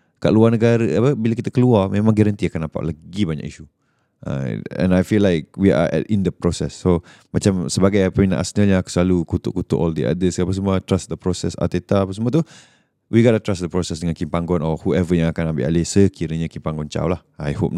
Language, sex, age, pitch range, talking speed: Malay, male, 20-39, 80-100 Hz, 225 wpm